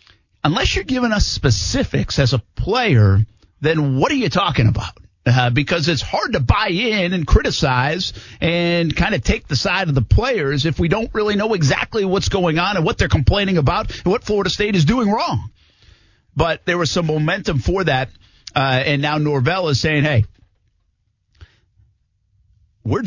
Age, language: 50-69, English